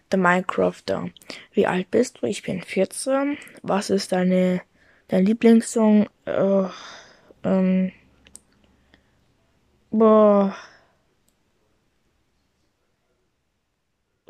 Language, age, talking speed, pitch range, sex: German, 20-39, 70 wpm, 190-220 Hz, female